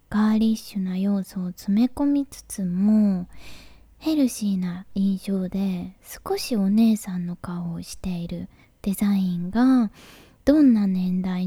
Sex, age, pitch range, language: female, 20-39, 190-235 Hz, Japanese